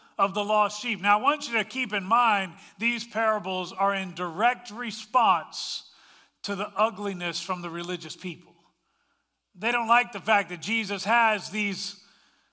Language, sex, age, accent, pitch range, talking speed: English, male, 40-59, American, 190-235 Hz, 165 wpm